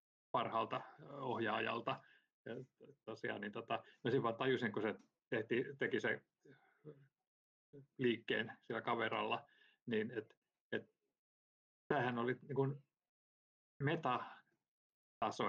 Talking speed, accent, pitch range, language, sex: 90 wpm, native, 115-140 Hz, Finnish, male